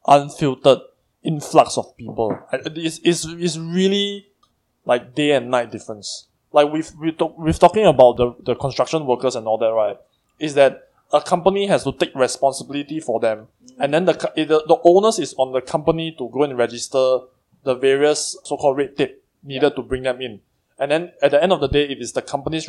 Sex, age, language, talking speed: male, 20-39, English, 195 wpm